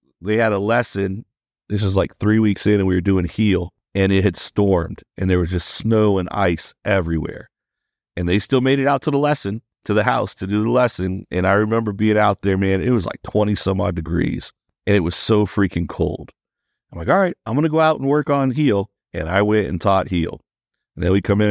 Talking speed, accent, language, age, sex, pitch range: 245 wpm, American, English, 50-69, male, 90-110 Hz